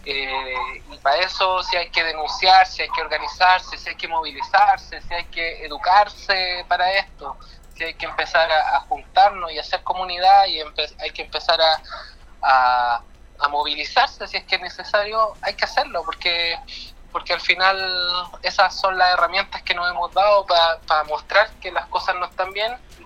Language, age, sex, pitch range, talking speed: Spanish, 20-39, male, 165-195 Hz, 185 wpm